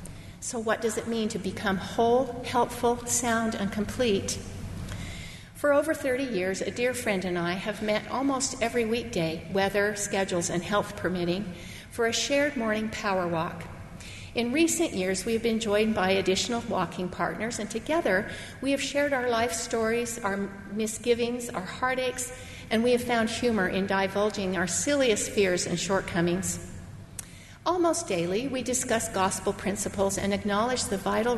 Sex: female